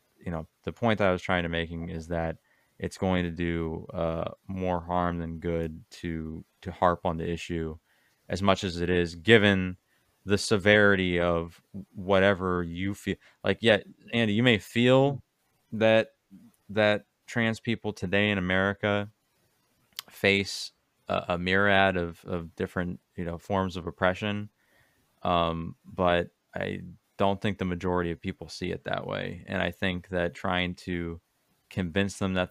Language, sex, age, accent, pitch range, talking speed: English, male, 20-39, American, 85-100 Hz, 160 wpm